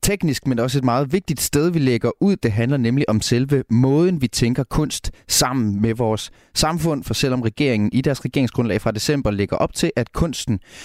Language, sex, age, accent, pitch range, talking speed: Danish, male, 30-49, native, 110-135 Hz, 200 wpm